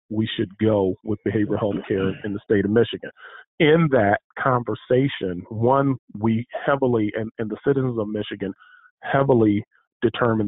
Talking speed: 150 wpm